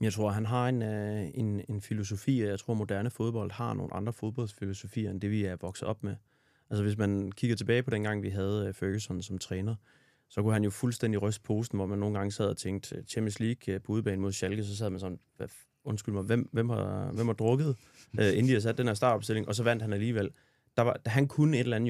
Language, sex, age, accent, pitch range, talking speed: Danish, male, 30-49, native, 100-120 Hz, 245 wpm